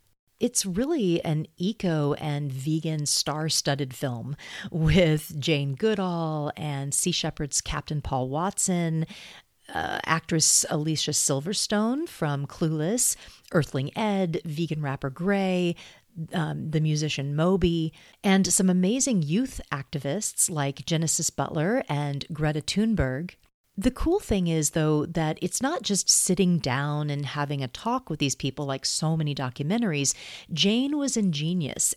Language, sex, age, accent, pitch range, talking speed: English, female, 40-59, American, 150-195 Hz, 130 wpm